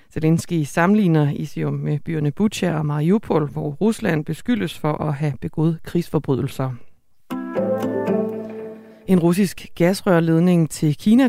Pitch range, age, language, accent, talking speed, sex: 150-190 Hz, 30-49, Danish, native, 110 wpm, female